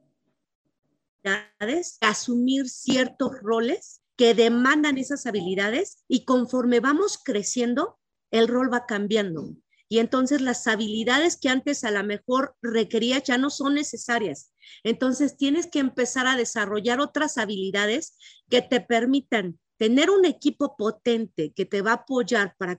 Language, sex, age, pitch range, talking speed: Spanish, female, 40-59, 220-270 Hz, 130 wpm